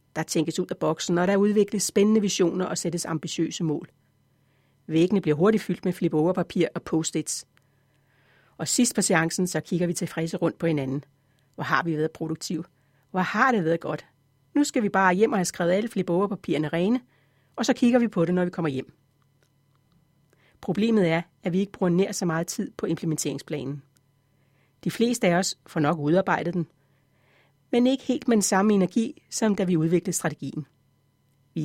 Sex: female